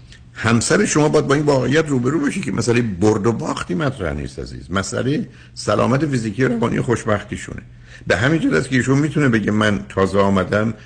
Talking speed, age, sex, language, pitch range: 170 wpm, 60-79, male, Persian, 80-115 Hz